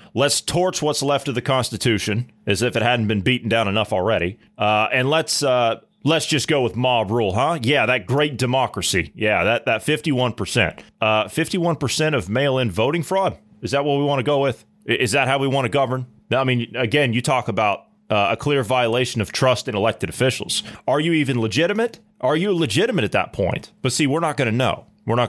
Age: 30-49